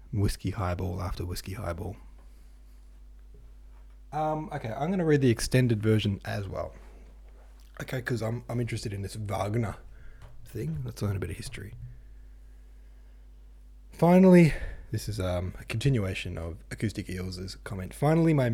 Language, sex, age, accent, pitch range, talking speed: English, male, 20-39, Australian, 85-125 Hz, 140 wpm